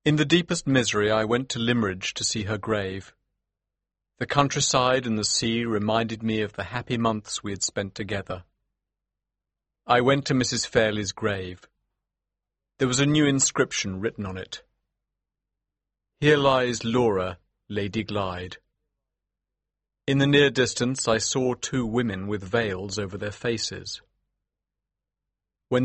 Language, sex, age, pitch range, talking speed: Persian, male, 40-59, 100-125 Hz, 140 wpm